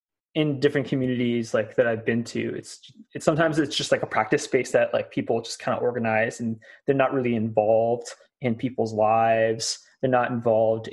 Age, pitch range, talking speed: 20-39, 115-150 Hz, 190 wpm